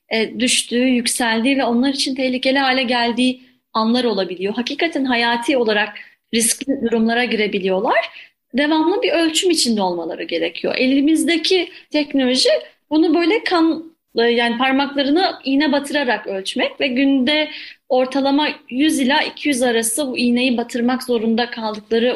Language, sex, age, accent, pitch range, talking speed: Turkish, female, 30-49, native, 235-300 Hz, 120 wpm